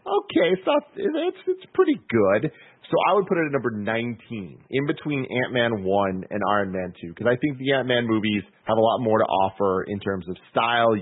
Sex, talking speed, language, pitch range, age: male, 205 wpm, English, 100-130 Hz, 30-49